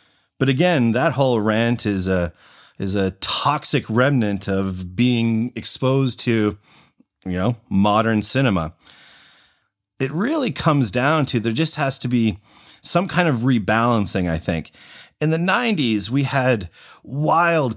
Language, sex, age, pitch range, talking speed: English, male, 30-49, 105-145 Hz, 140 wpm